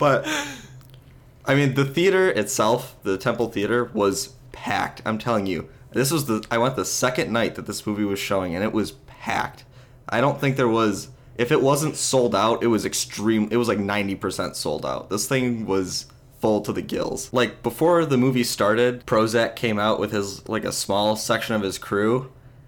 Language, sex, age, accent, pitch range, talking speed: English, male, 20-39, American, 115-150 Hz, 195 wpm